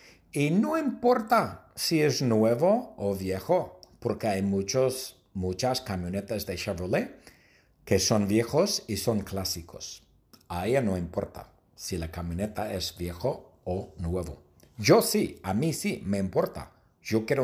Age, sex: 50-69, male